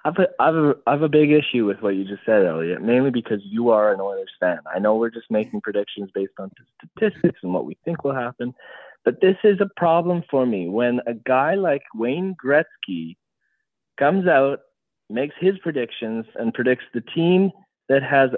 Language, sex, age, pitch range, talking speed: English, male, 20-39, 105-155 Hz, 200 wpm